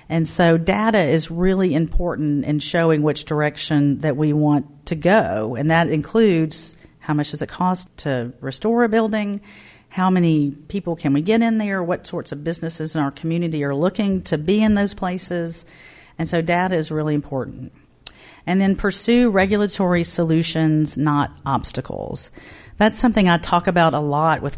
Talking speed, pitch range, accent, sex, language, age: 170 wpm, 150-180 Hz, American, female, English, 40-59